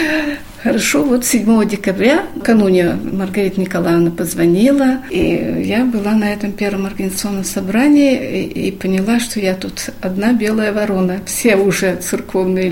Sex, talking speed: female, 130 wpm